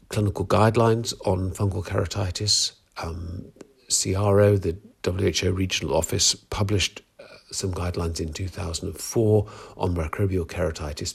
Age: 50-69